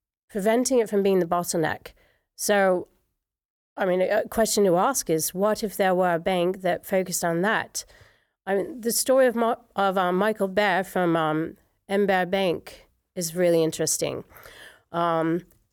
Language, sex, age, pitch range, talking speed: English, female, 30-49, 170-215 Hz, 160 wpm